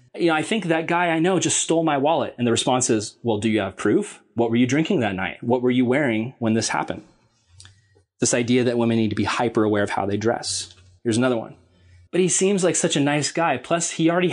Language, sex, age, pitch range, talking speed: English, male, 20-39, 115-155 Hz, 255 wpm